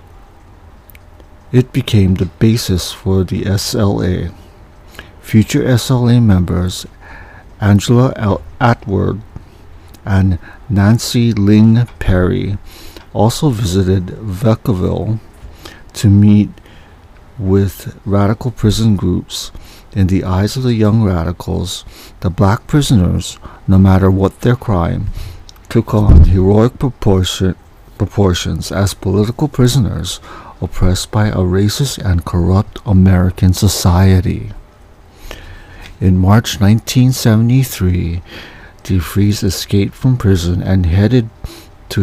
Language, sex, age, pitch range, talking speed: English, male, 50-69, 90-110 Hz, 95 wpm